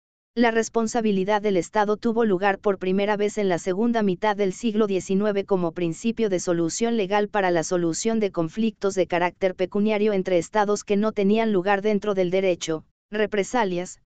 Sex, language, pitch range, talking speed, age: female, Spanish, 180-220 Hz, 165 wpm, 50-69